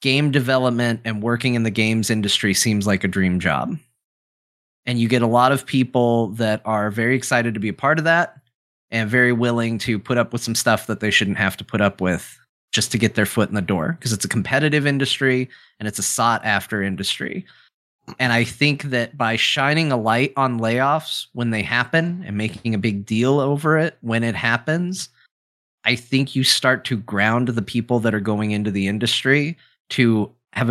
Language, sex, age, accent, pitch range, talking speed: English, male, 30-49, American, 110-135 Hz, 205 wpm